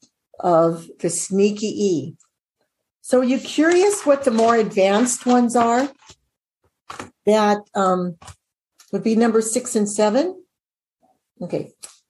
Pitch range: 205-275 Hz